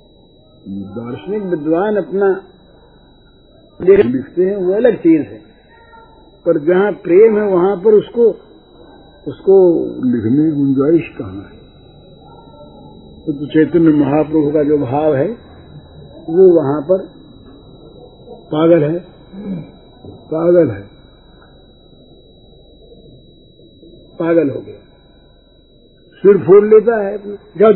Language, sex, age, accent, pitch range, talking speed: Hindi, male, 60-79, native, 150-205 Hz, 95 wpm